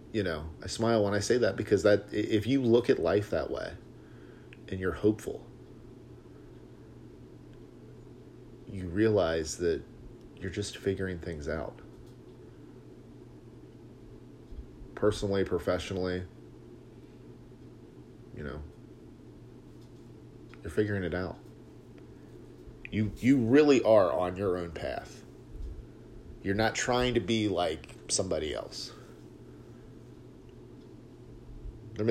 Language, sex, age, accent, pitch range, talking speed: English, male, 40-59, American, 90-110 Hz, 100 wpm